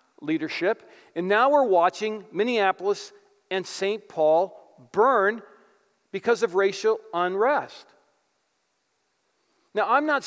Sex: male